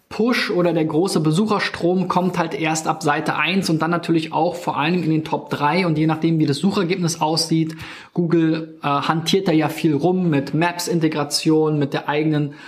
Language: German